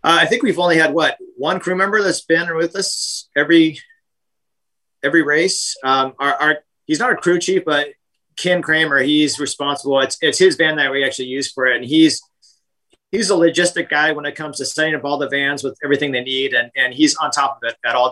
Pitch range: 130-160 Hz